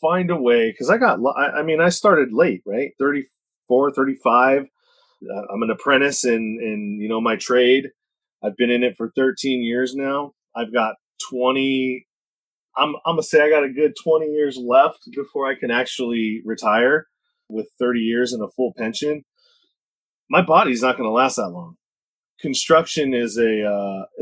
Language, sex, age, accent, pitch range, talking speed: English, male, 30-49, American, 115-145 Hz, 170 wpm